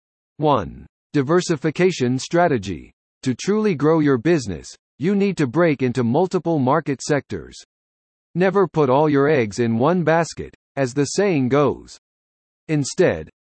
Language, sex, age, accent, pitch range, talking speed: English, male, 50-69, American, 120-175 Hz, 130 wpm